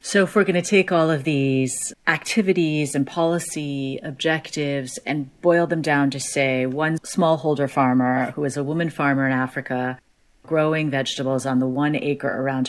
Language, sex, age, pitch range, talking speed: English, female, 30-49, 130-150 Hz, 170 wpm